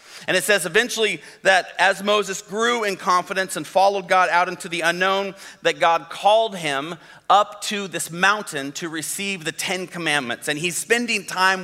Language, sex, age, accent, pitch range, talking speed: English, male, 40-59, American, 160-195 Hz, 175 wpm